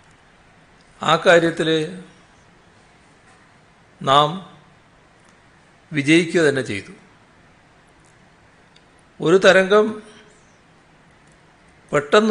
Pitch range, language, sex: 150-195 Hz, Malayalam, male